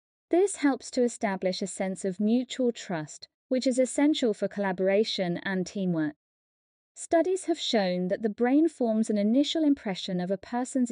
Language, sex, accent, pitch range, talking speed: English, female, British, 195-275 Hz, 160 wpm